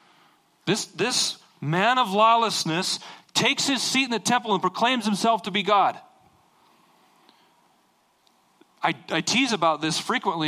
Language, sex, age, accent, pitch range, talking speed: English, male, 40-59, American, 160-225 Hz, 130 wpm